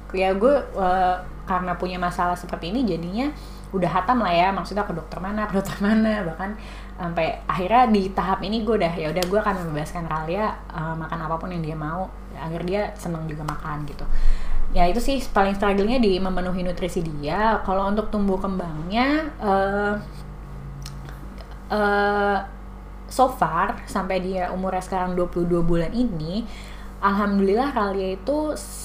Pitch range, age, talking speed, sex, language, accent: 175-215 Hz, 20-39, 150 wpm, female, Indonesian, native